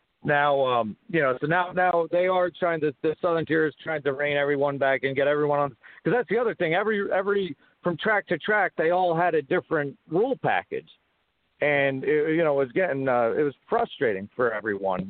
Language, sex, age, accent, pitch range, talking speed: English, male, 50-69, American, 140-180 Hz, 215 wpm